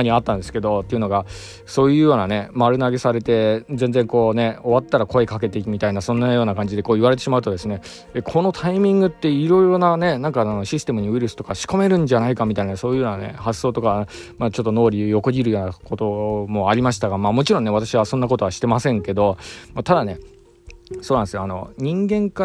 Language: Japanese